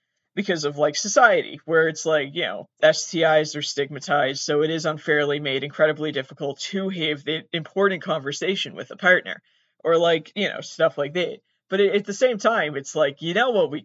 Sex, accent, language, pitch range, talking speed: male, American, English, 150-195 Hz, 195 wpm